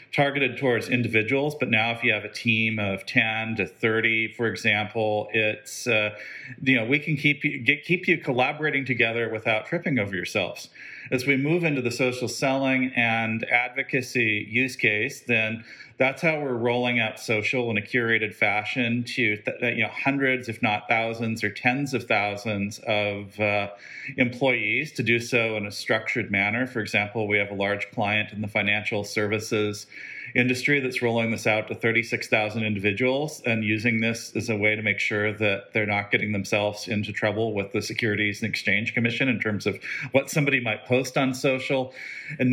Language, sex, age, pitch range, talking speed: English, male, 40-59, 105-130 Hz, 175 wpm